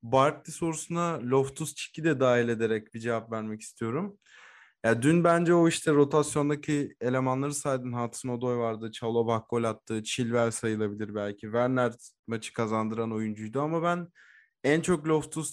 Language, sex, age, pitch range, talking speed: Turkish, male, 20-39, 120-155 Hz, 145 wpm